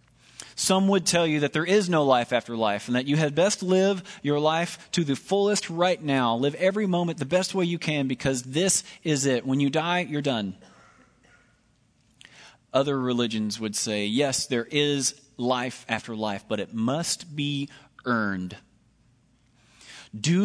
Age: 30-49